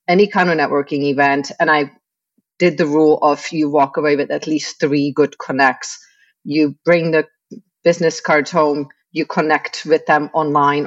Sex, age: female, 30-49